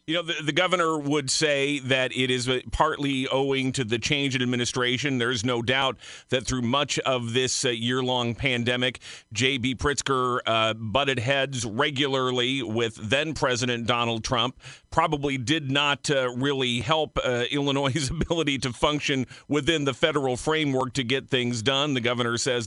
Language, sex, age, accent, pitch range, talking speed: English, male, 50-69, American, 120-150 Hz, 155 wpm